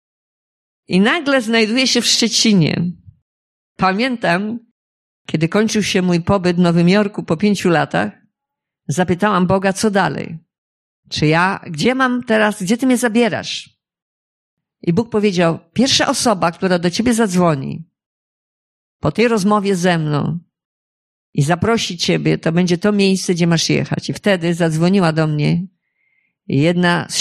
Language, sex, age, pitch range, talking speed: Polish, female, 50-69, 155-195 Hz, 135 wpm